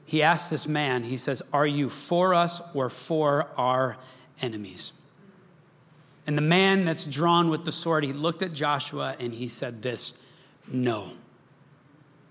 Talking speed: 150 wpm